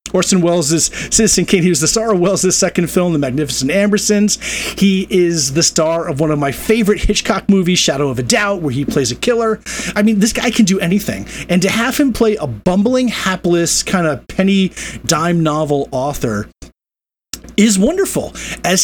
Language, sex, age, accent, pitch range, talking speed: English, male, 40-59, American, 150-210 Hz, 185 wpm